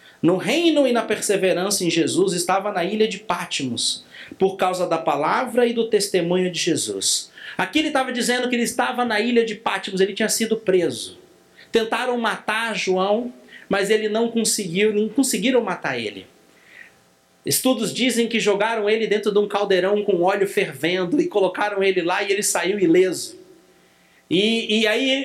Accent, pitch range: Brazilian, 170-230 Hz